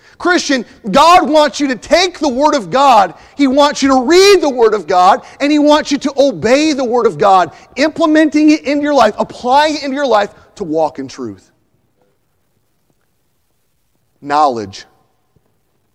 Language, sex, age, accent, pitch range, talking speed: English, male, 40-59, American, 205-270 Hz, 165 wpm